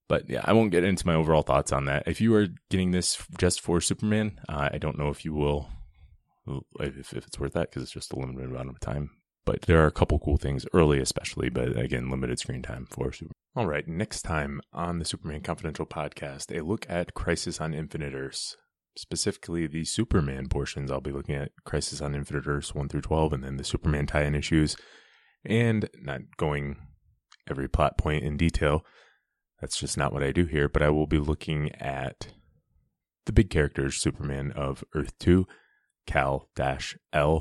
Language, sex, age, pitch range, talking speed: English, male, 20-39, 70-85 Hz, 195 wpm